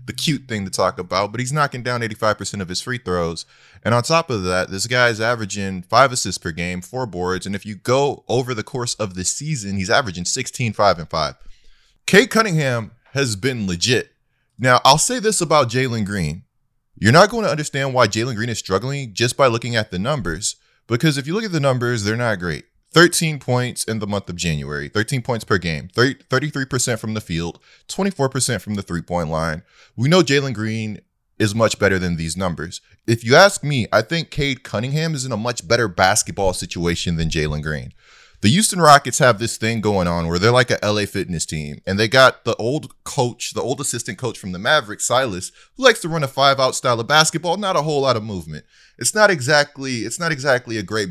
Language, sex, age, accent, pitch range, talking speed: English, male, 20-39, American, 95-145 Hz, 215 wpm